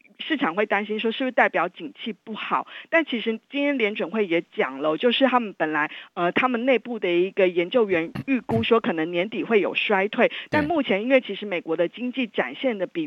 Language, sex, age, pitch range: Chinese, female, 50-69, 185-250 Hz